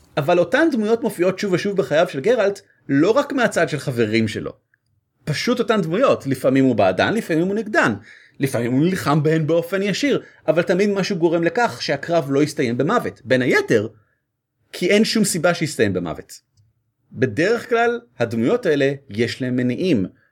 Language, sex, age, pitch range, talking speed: Hebrew, male, 30-49, 120-180 Hz, 160 wpm